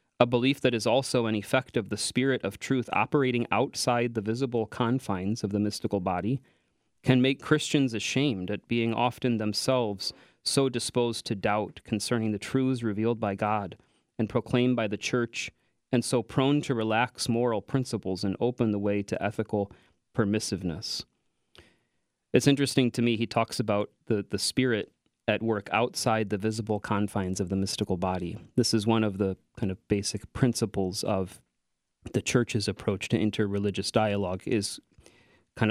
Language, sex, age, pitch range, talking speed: English, male, 30-49, 100-125 Hz, 160 wpm